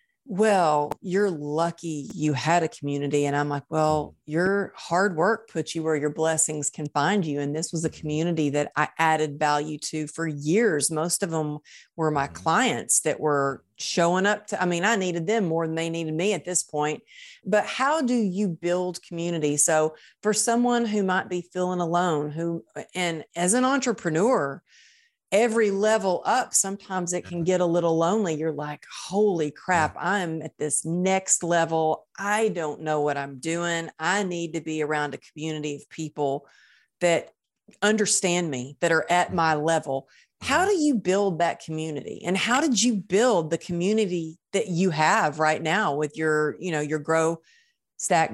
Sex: female